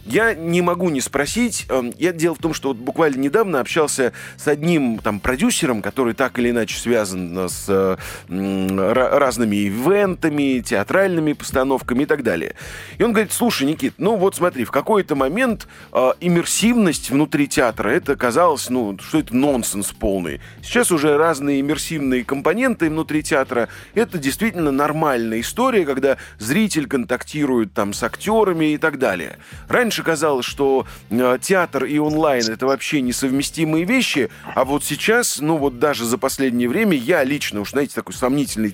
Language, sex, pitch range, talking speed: Russian, male, 125-175 Hz, 155 wpm